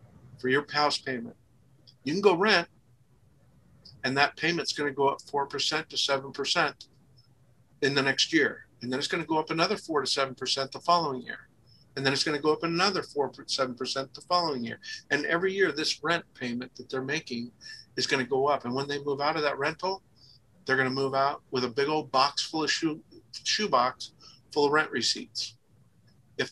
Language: English